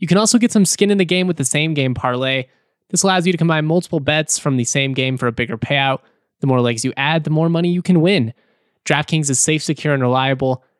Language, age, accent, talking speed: English, 20-39, American, 255 wpm